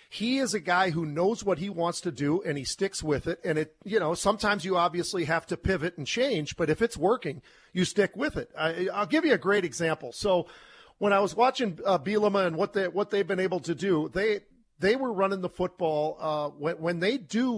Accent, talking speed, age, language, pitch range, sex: American, 245 wpm, 40-59, English, 155-195 Hz, male